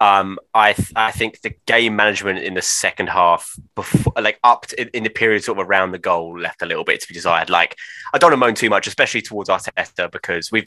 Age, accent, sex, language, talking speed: 20-39, British, male, English, 235 wpm